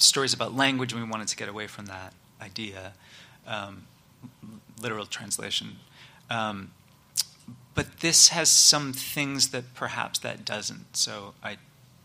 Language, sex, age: English, male, 30-49